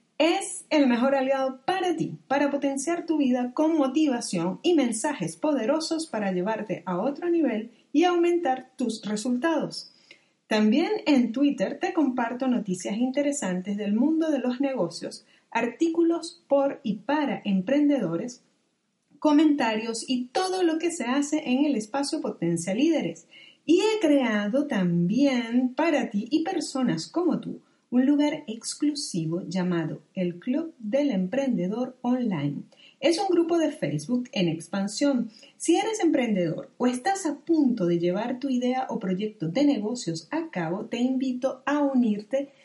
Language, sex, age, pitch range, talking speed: Spanish, female, 30-49, 225-305 Hz, 140 wpm